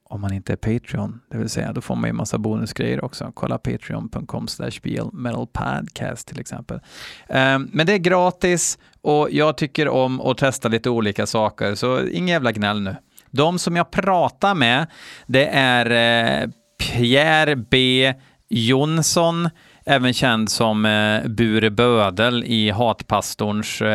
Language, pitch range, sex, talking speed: Swedish, 110-135 Hz, male, 140 wpm